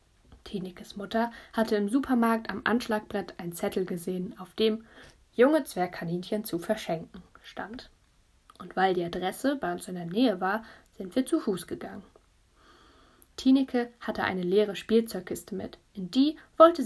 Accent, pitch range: German, 190-235 Hz